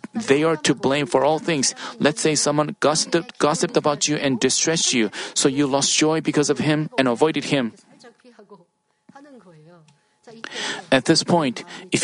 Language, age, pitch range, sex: Korean, 40-59, 140-205 Hz, male